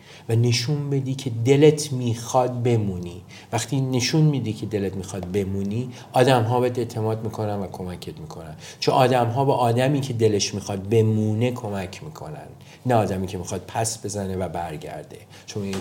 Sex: male